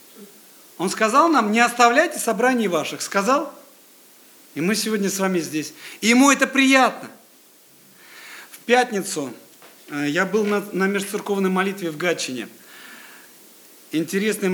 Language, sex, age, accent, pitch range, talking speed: Russian, male, 50-69, native, 180-245 Hz, 120 wpm